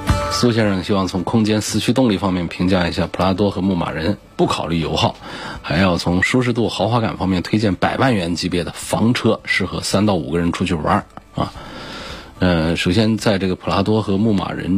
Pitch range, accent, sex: 90-110 Hz, native, male